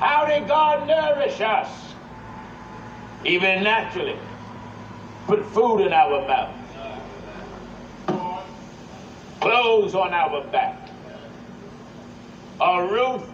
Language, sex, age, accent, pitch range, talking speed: English, male, 60-79, American, 175-255 Hz, 80 wpm